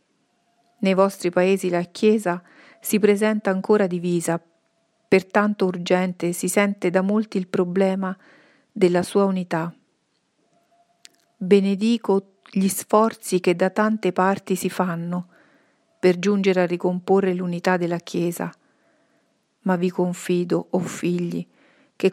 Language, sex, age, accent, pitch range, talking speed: Italian, female, 40-59, native, 180-210 Hz, 115 wpm